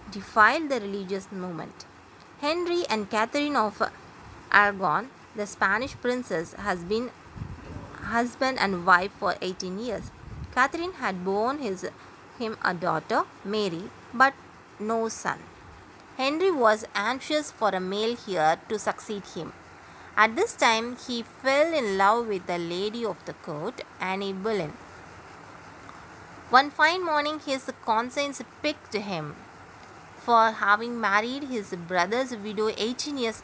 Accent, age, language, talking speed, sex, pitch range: native, 20-39, Tamil, 125 wpm, female, 195-270 Hz